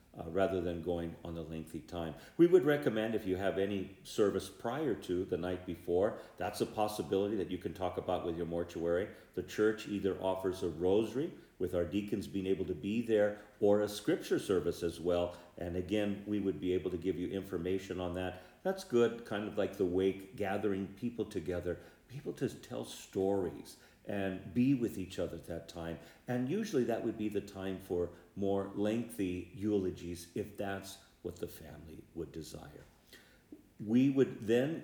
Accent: American